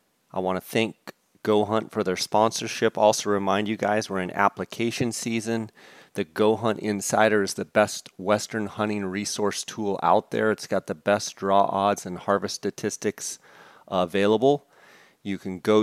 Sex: male